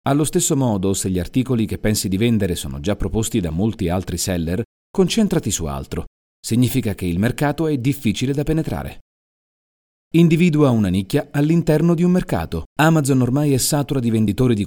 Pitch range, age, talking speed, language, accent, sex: 85-135 Hz, 40-59, 170 wpm, Italian, native, male